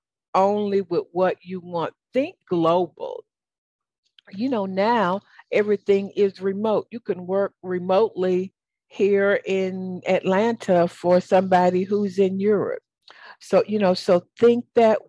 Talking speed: 125 wpm